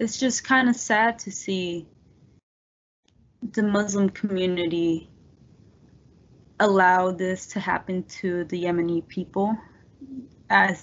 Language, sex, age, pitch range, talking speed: English, female, 20-39, 175-210 Hz, 105 wpm